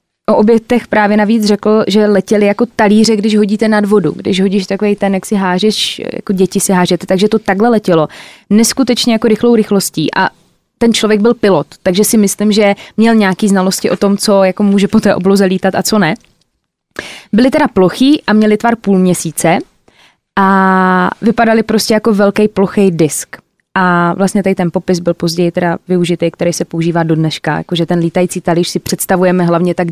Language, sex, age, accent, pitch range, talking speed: Czech, female, 20-39, native, 185-220 Hz, 185 wpm